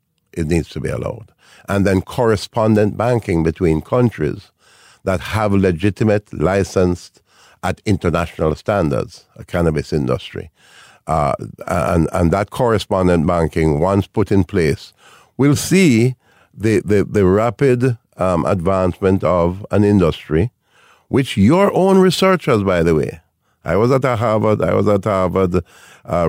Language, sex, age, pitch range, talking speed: English, male, 50-69, 85-110 Hz, 135 wpm